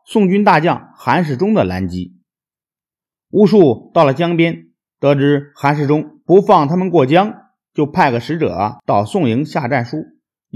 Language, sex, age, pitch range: Chinese, male, 50-69, 125-185 Hz